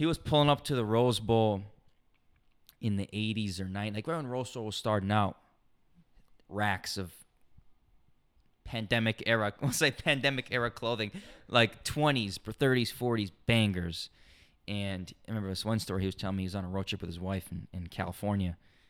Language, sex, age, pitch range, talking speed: English, male, 20-39, 100-120 Hz, 175 wpm